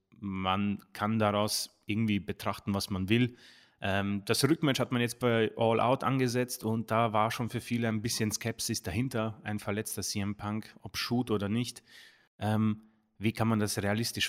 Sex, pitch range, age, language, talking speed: male, 105-135 Hz, 30-49, German, 170 wpm